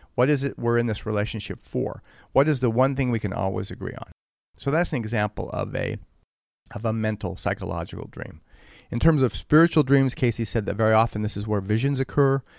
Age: 40-59